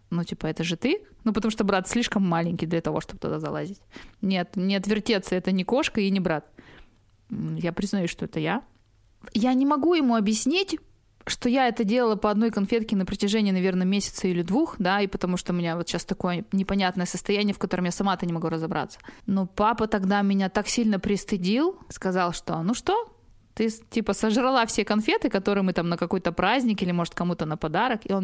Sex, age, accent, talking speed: female, 20-39, native, 200 wpm